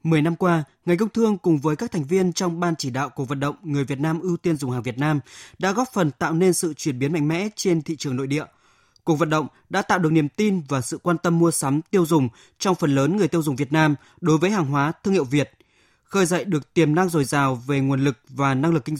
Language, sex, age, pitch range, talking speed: Vietnamese, male, 20-39, 145-185 Hz, 275 wpm